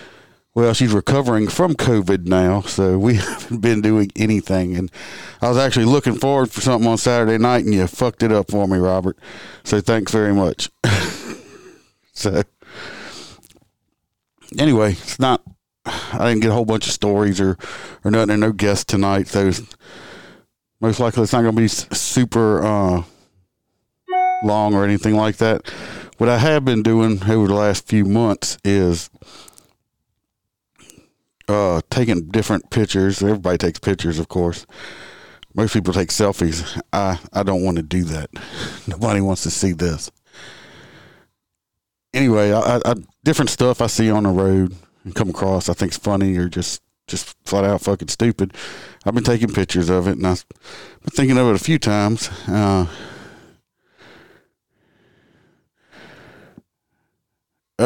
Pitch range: 95-115 Hz